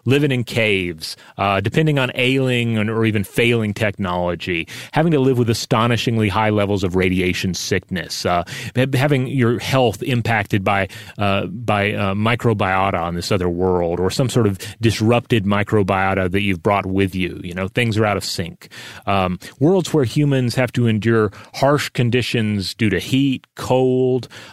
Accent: American